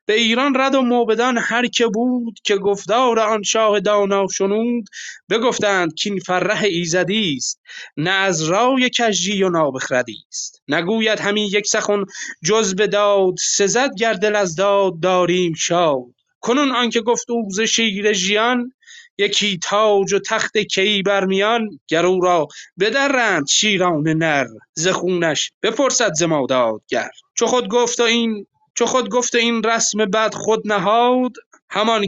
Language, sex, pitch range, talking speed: Persian, male, 190-230 Hz, 145 wpm